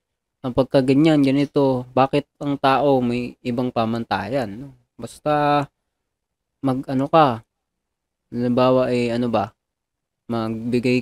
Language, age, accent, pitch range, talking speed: Filipino, 20-39, native, 120-140 Hz, 105 wpm